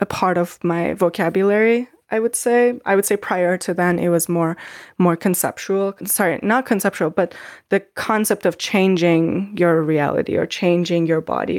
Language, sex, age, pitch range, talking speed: English, female, 20-39, 170-200 Hz, 170 wpm